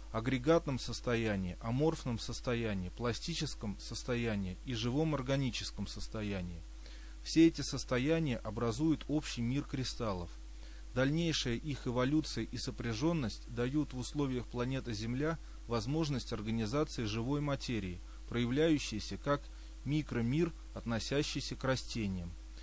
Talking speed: 100 wpm